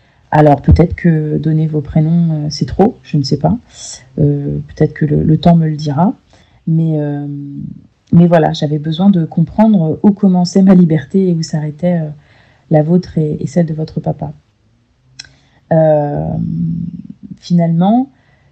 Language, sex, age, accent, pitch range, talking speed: French, female, 30-49, French, 155-180 Hz, 150 wpm